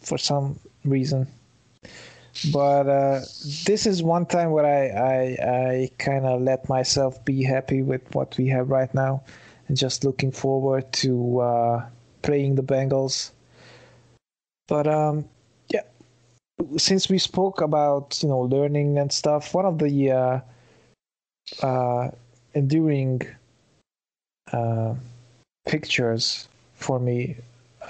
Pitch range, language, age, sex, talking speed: 125-150 Hz, English, 20-39, male, 120 wpm